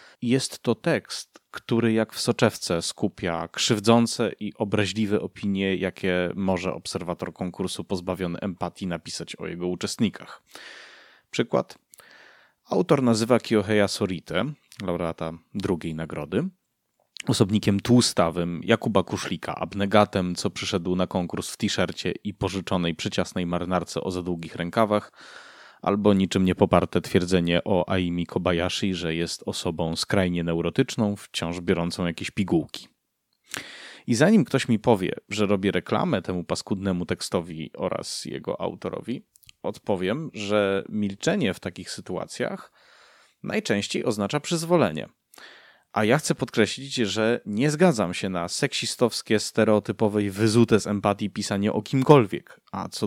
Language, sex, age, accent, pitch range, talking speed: Polish, male, 30-49, native, 90-110 Hz, 125 wpm